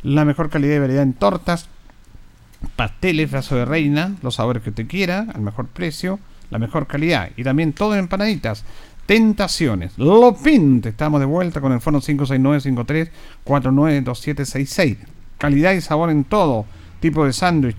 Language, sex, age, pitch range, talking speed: Spanish, male, 50-69, 120-170 Hz, 150 wpm